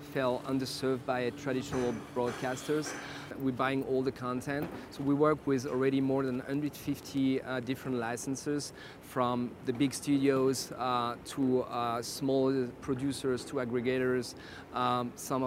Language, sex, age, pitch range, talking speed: English, male, 40-59, 125-140 Hz, 130 wpm